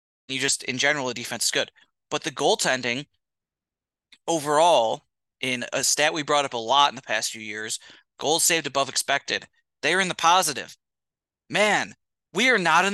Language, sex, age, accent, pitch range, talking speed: English, male, 30-49, American, 130-190 Hz, 180 wpm